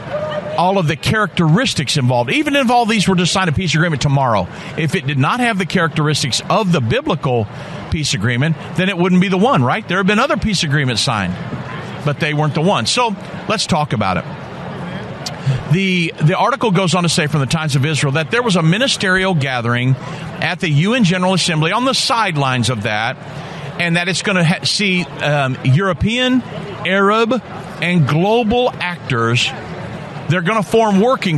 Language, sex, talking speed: English, male, 185 wpm